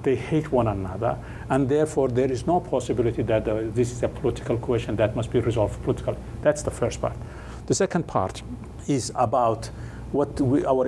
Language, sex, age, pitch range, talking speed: English, male, 60-79, 110-135 Hz, 190 wpm